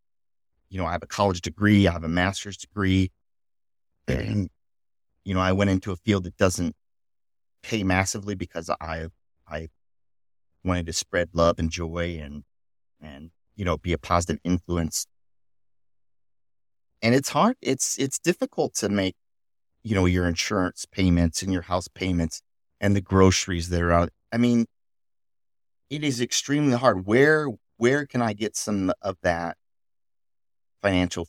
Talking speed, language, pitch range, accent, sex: 150 wpm, English, 85-110 Hz, American, male